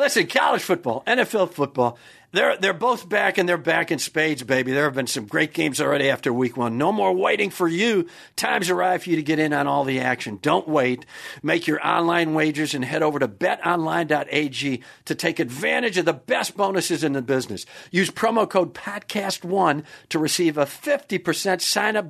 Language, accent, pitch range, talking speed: English, American, 160-215 Hz, 195 wpm